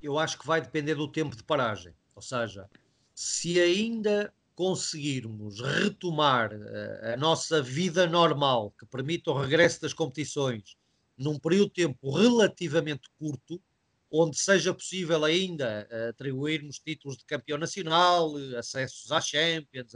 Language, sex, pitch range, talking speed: Portuguese, male, 140-185 Hz, 130 wpm